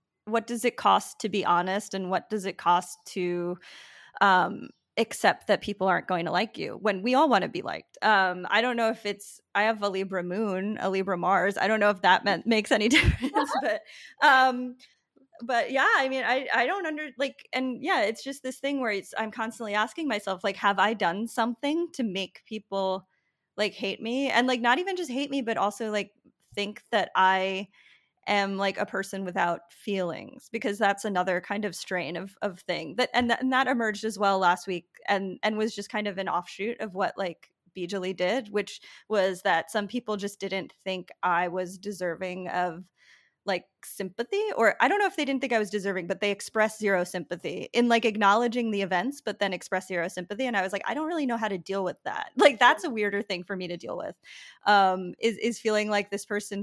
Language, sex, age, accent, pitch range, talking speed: English, female, 20-39, American, 185-235 Hz, 220 wpm